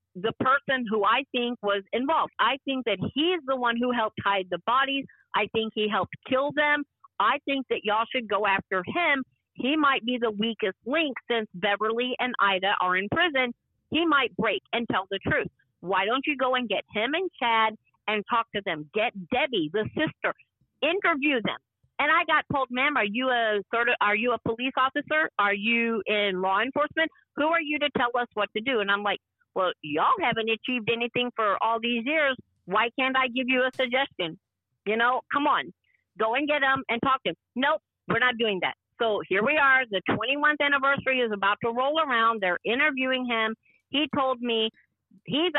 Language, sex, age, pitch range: English, female, 50-69, 210-270 Hz